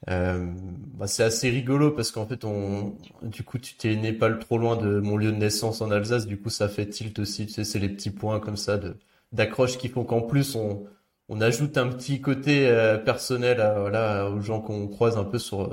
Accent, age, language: French, 20-39, French